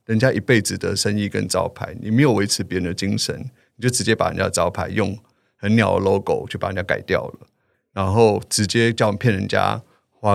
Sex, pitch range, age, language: male, 100-120 Hz, 30-49, Chinese